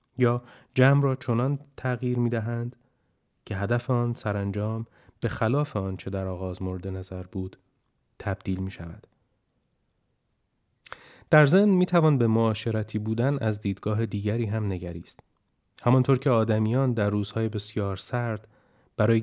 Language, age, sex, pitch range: Persian, 30-49, male, 100-125 Hz